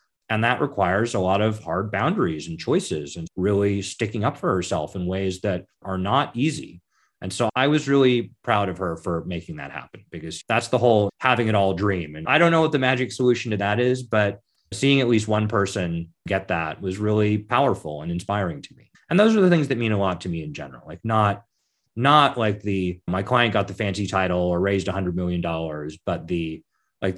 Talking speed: 225 wpm